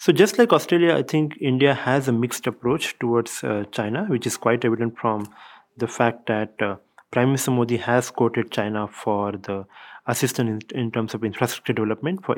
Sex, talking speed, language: male, 190 wpm, English